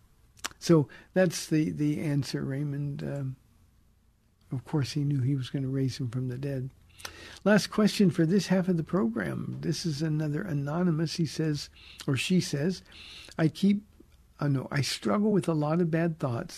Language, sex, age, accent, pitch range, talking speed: English, male, 60-79, American, 135-170 Hz, 175 wpm